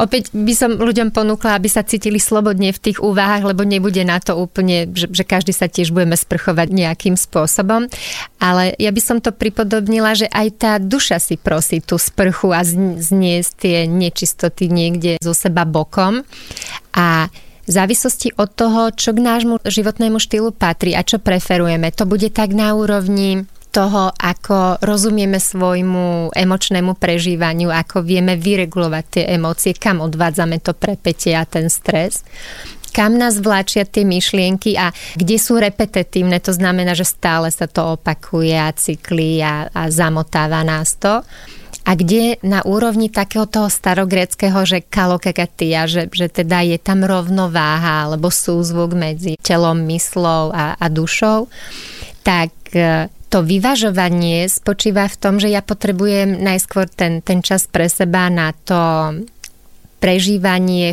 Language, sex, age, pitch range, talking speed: Slovak, female, 30-49, 170-205 Hz, 145 wpm